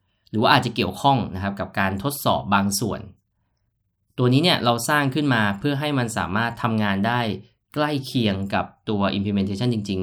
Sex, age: male, 20-39